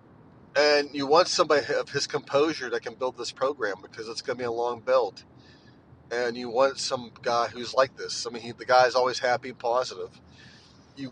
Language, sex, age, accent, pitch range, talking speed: English, male, 30-49, American, 115-140 Hz, 200 wpm